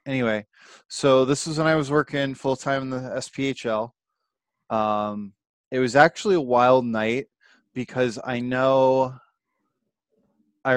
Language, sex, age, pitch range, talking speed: English, male, 20-39, 115-140 Hz, 130 wpm